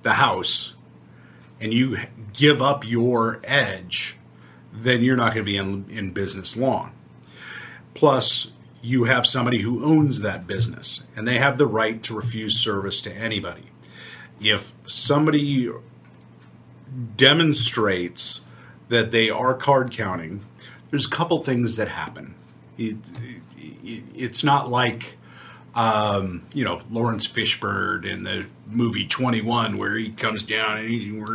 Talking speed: 140 wpm